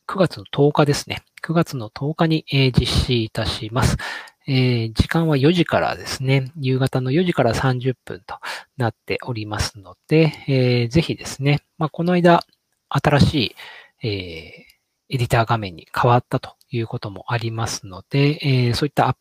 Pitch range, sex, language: 115-150 Hz, male, Japanese